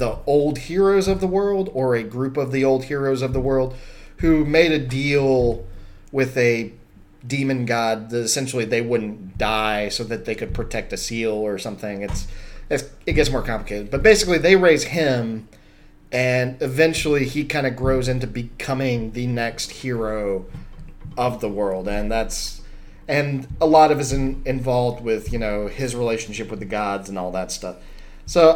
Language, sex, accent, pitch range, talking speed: English, male, American, 115-150 Hz, 180 wpm